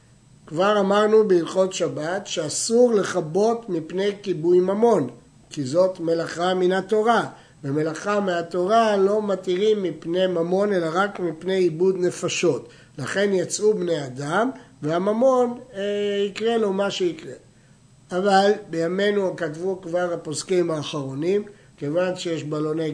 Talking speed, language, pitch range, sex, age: 115 wpm, Hebrew, 155-200 Hz, male, 60-79